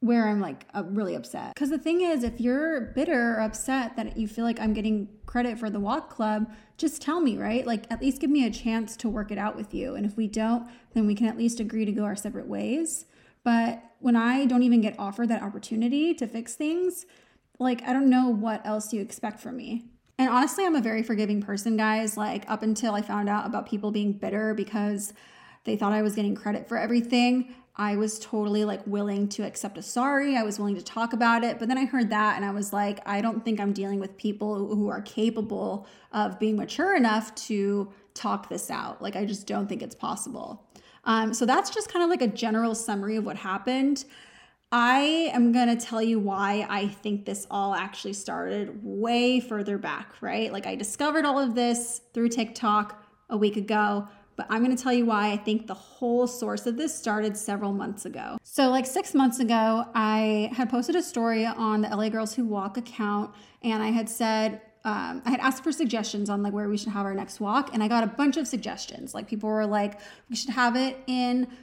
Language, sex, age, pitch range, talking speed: English, female, 20-39, 210-245 Hz, 225 wpm